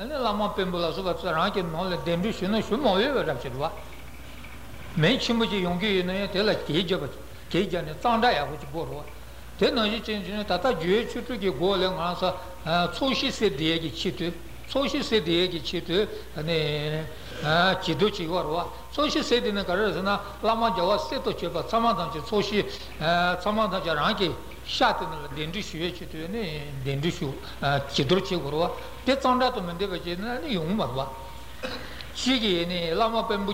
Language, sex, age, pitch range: Italian, male, 60-79, 165-215 Hz